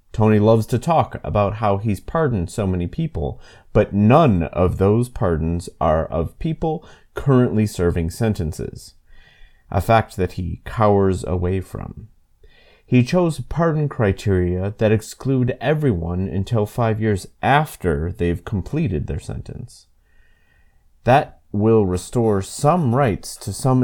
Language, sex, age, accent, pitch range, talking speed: English, male, 30-49, American, 85-120 Hz, 130 wpm